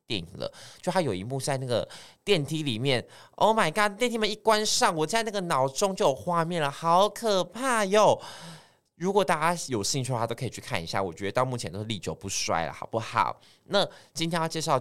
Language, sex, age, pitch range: Chinese, male, 20-39, 105-155 Hz